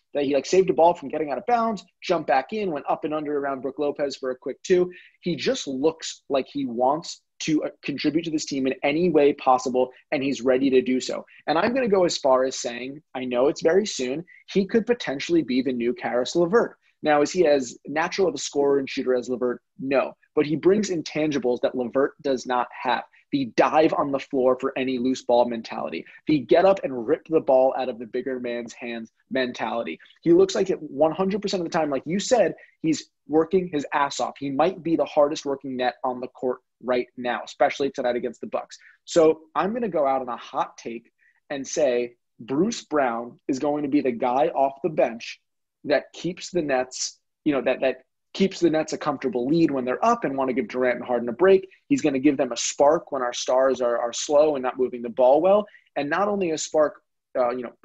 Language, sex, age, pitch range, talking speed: English, male, 20-39, 130-175 Hz, 230 wpm